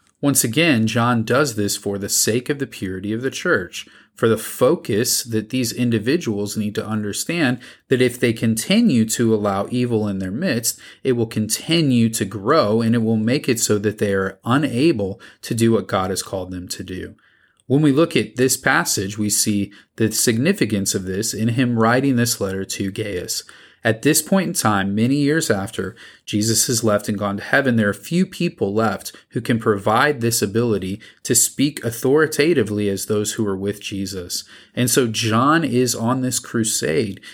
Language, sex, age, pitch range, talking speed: English, male, 30-49, 105-130 Hz, 190 wpm